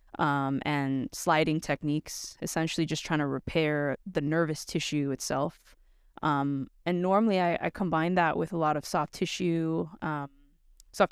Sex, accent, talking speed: female, American, 150 wpm